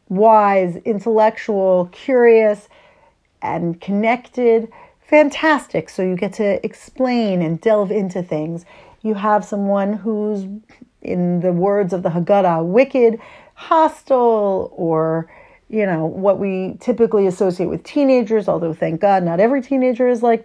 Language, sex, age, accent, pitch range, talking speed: English, female, 40-59, American, 190-240 Hz, 130 wpm